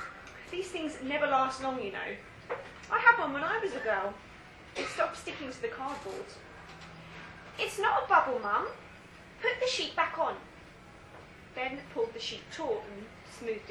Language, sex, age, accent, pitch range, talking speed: English, female, 20-39, British, 250-410 Hz, 165 wpm